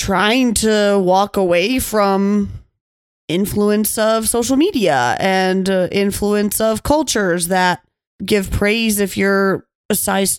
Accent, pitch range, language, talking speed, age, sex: American, 190-225 Hz, English, 115 wpm, 30-49, female